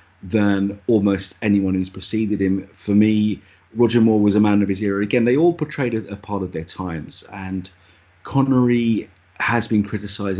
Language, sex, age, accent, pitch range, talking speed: English, male, 30-49, British, 95-105 Hz, 180 wpm